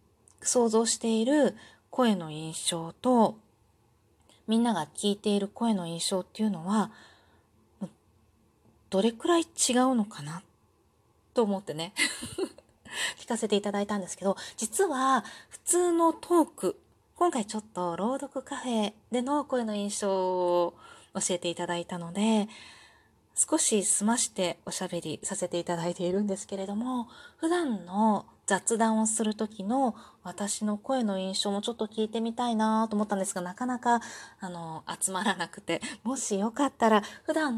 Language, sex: Japanese, female